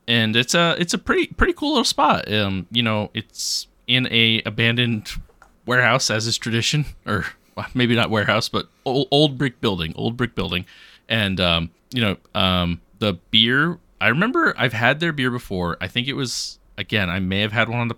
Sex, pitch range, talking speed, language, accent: male, 100-135 Hz, 195 wpm, English, American